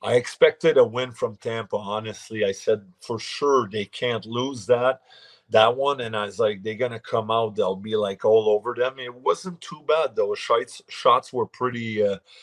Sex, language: male, English